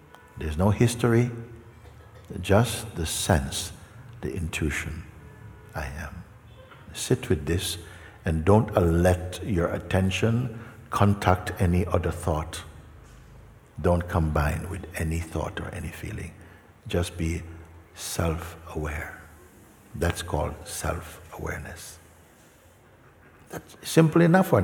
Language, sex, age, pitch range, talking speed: English, male, 60-79, 80-105 Hz, 95 wpm